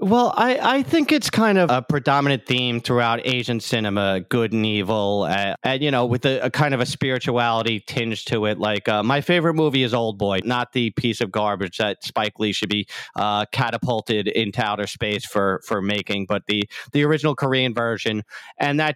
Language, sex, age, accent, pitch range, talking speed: English, male, 40-59, American, 115-140 Hz, 205 wpm